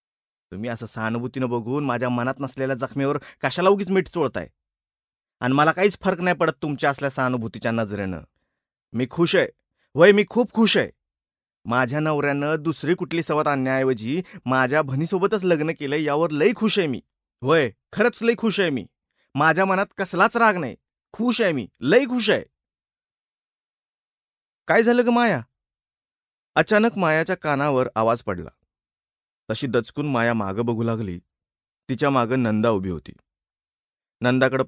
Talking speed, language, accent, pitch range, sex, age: 145 wpm, Marathi, native, 115-185 Hz, male, 30-49